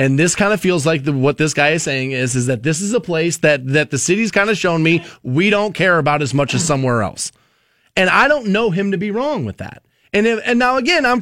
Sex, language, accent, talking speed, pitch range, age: male, English, American, 280 wpm, 145-205 Hz, 30-49